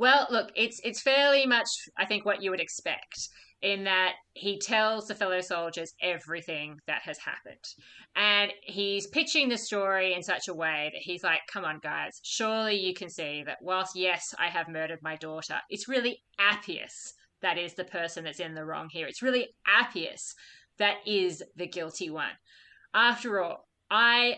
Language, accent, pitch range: English, Australian, 170-210 Hz